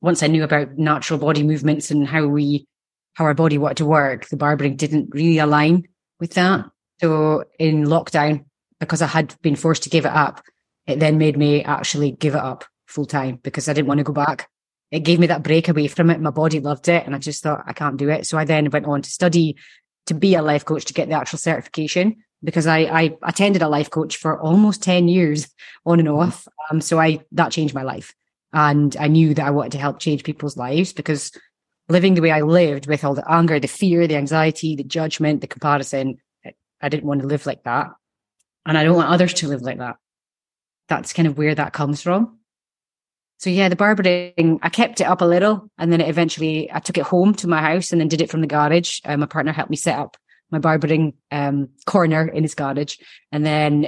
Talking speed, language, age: 230 wpm, English, 20-39